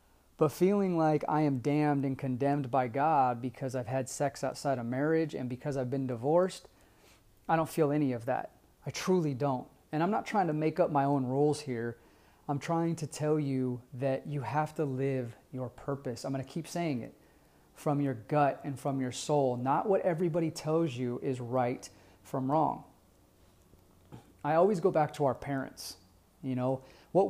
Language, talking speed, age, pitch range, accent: English, 190 wpm, 30-49, 130-155 Hz, American